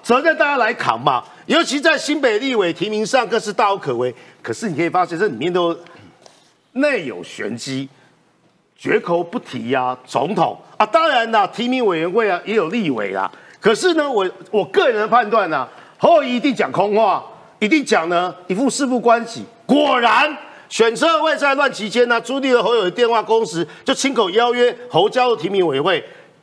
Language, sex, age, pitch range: Chinese, male, 50-69, 185-280 Hz